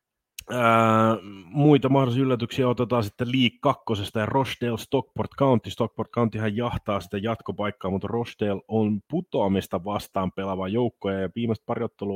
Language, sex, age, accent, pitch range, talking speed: Finnish, male, 30-49, native, 95-125 Hz, 130 wpm